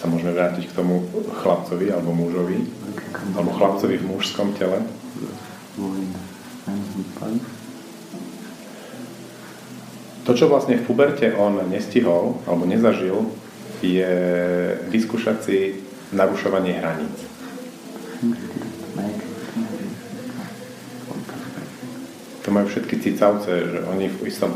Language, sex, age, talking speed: Slovak, male, 40-59, 85 wpm